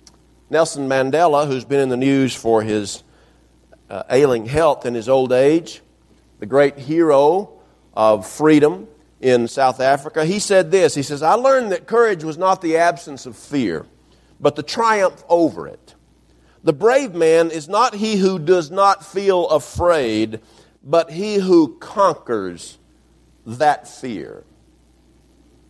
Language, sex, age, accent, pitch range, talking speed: English, male, 50-69, American, 105-170 Hz, 140 wpm